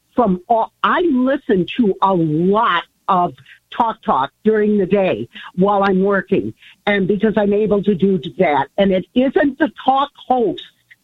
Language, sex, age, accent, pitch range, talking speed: English, female, 50-69, American, 200-260 Hz, 160 wpm